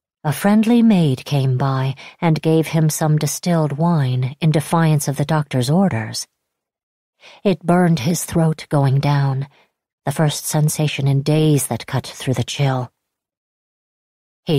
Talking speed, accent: 140 wpm, American